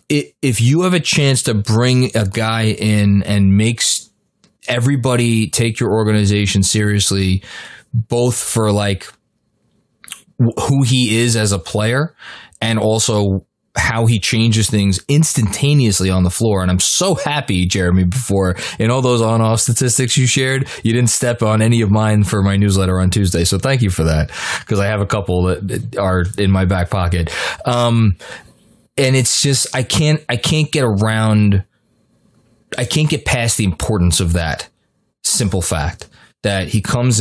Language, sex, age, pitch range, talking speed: English, male, 20-39, 100-125 Hz, 160 wpm